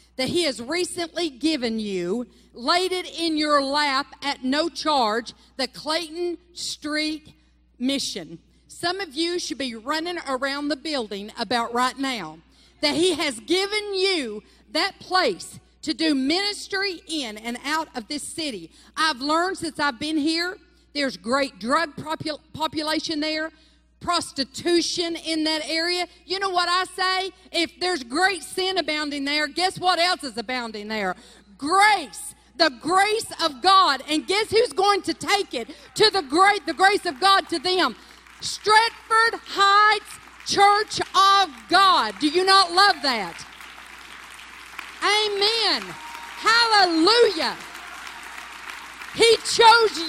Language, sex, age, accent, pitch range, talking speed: English, female, 50-69, American, 290-380 Hz, 135 wpm